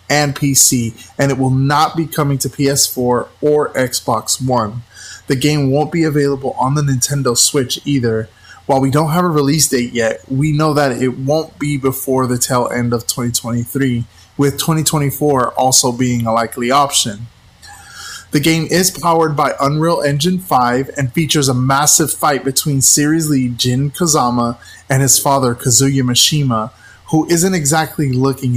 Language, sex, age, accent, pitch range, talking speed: English, male, 20-39, American, 120-150 Hz, 160 wpm